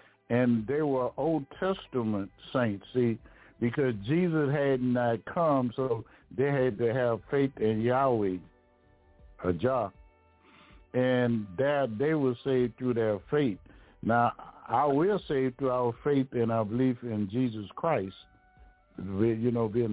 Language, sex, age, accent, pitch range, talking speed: English, male, 60-79, American, 105-130 Hz, 135 wpm